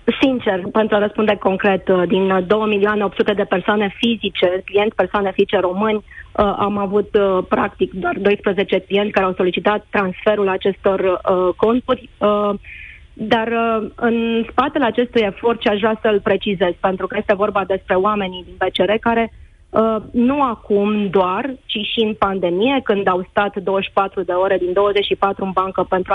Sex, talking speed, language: female, 145 wpm, Romanian